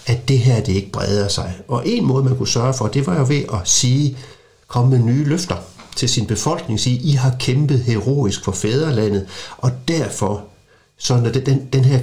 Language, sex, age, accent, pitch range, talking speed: Danish, male, 60-79, native, 110-135 Hz, 200 wpm